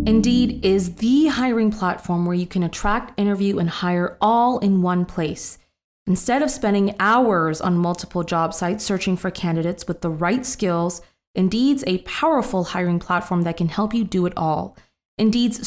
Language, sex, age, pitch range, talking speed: English, female, 20-39, 175-215 Hz, 170 wpm